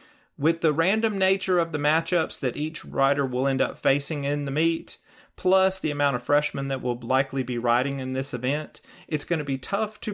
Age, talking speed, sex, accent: 40-59, 215 wpm, male, American